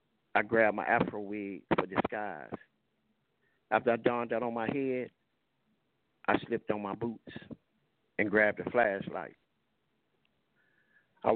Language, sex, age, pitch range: English, male, 50-69, 105-125 Hz